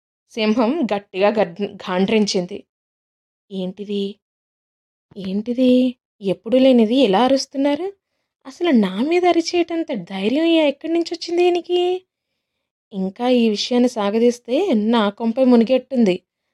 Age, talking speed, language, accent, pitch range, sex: 20-39, 90 wpm, Telugu, native, 225-305 Hz, female